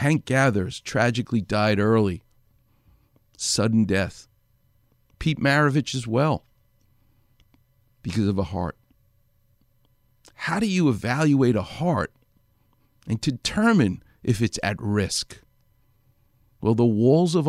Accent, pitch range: American, 105-135 Hz